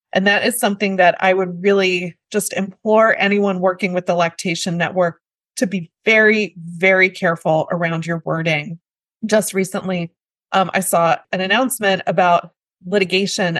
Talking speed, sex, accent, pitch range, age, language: 145 wpm, female, American, 180-210 Hz, 30-49, English